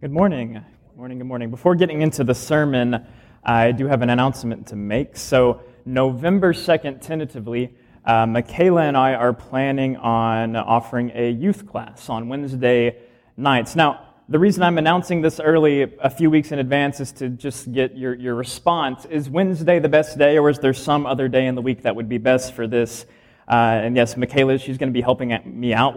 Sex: male